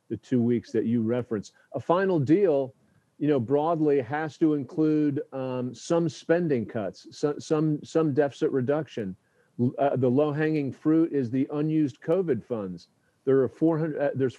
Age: 50-69